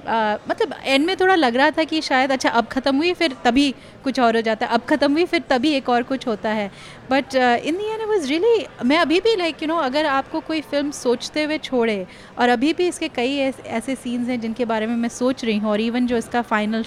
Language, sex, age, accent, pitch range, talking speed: Hindi, female, 30-49, native, 215-270 Hz, 240 wpm